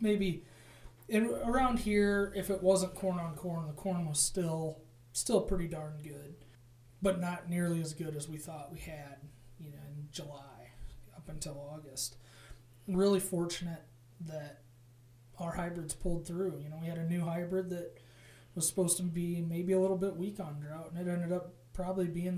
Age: 20-39